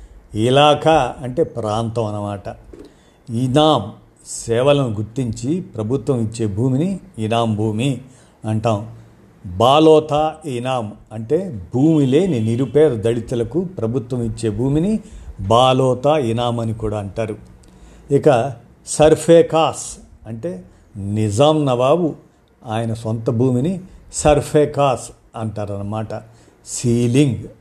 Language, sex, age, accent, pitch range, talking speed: Telugu, male, 50-69, native, 110-140 Hz, 85 wpm